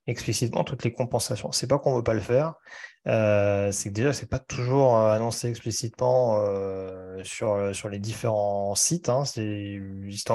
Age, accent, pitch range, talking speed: 30-49, French, 105-130 Hz, 185 wpm